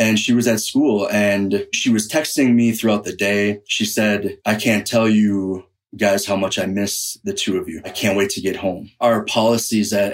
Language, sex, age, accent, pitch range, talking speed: English, male, 30-49, American, 105-120 Hz, 220 wpm